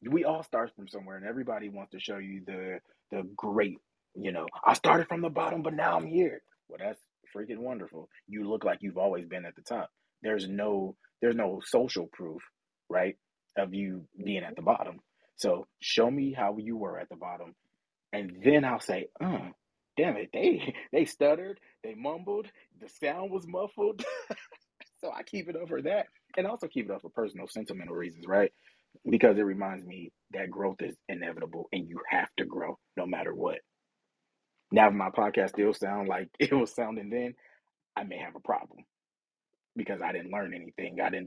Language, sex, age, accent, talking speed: English, male, 30-49, American, 195 wpm